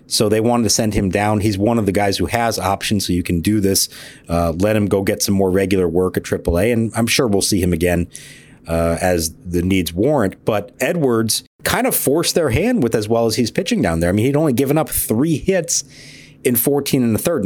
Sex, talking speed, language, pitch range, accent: male, 245 wpm, English, 95-125 Hz, American